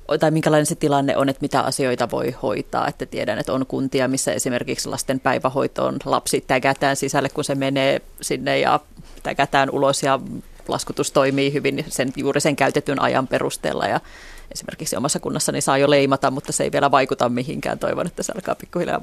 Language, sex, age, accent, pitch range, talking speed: Finnish, female, 30-49, native, 135-150 Hz, 180 wpm